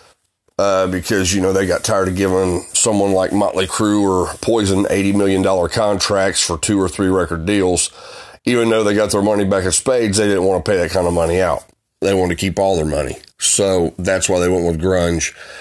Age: 30-49